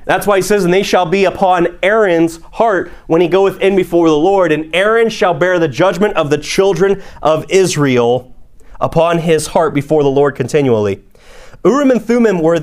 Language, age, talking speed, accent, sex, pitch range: English, 30-49, 190 wpm, American, male, 155-215 Hz